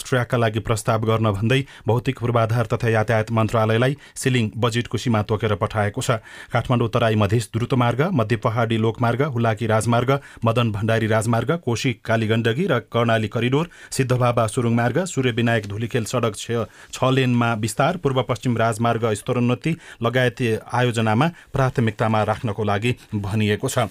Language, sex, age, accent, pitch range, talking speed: English, male, 30-49, Indian, 115-135 Hz, 105 wpm